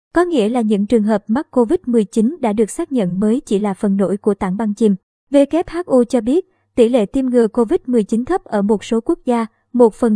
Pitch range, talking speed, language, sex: 220-265 Hz, 220 wpm, Vietnamese, male